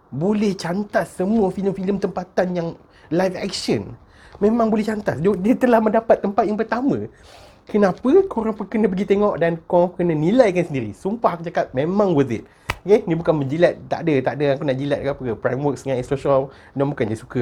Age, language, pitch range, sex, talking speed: 30-49, Malay, 115-170 Hz, male, 195 wpm